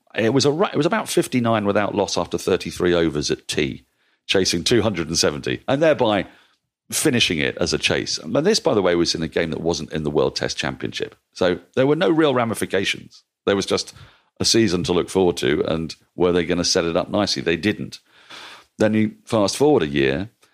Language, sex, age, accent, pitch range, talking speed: English, male, 40-59, British, 80-105 Hz, 205 wpm